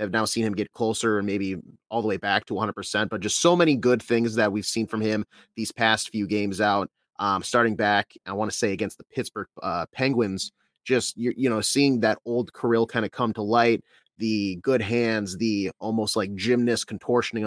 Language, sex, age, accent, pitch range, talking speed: English, male, 30-49, American, 105-130 Hz, 215 wpm